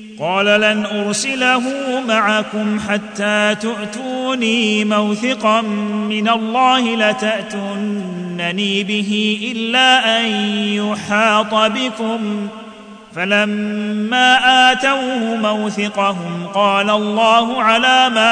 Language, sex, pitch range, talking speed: Arabic, male, 210-225 Hz, 70 wpm